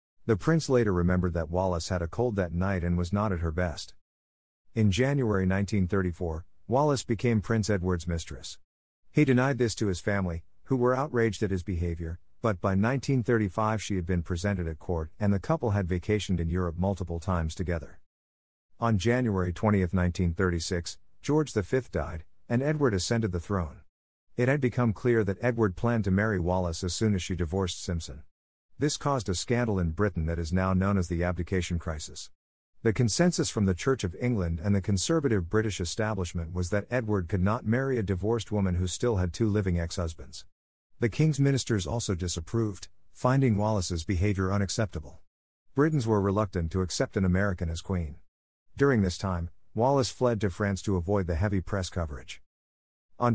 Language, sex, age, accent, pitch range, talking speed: English, male, 50-69, American, 85-110 Hz, 175 wpm